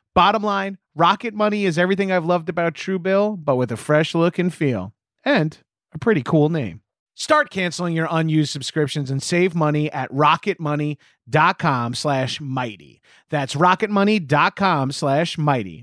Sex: male